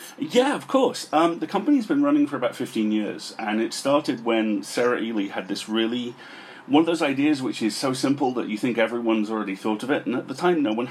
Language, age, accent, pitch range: English, 40-59, British, 110-175 Hz